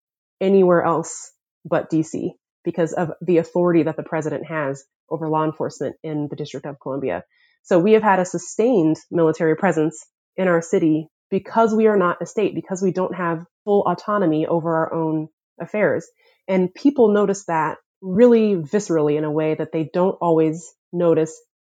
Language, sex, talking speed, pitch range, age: English, female, 170 wpm, 160-195 Hz, 30-49